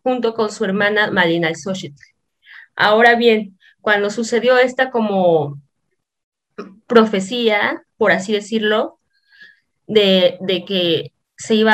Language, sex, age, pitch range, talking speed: Spanish, female, 20-39, 180-230 Hz, 105 wpm